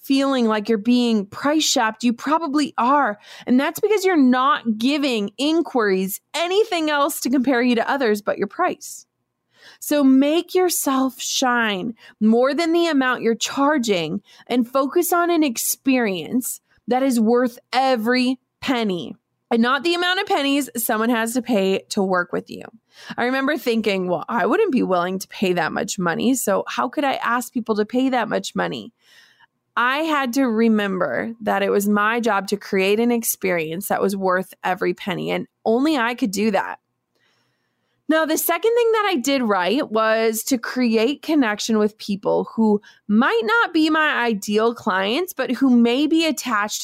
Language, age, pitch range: English, 20-39, 215-295 Hz